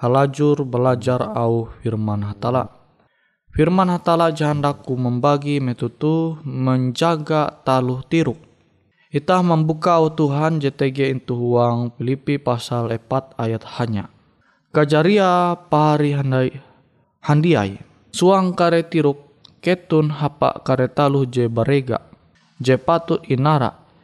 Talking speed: 95 wpm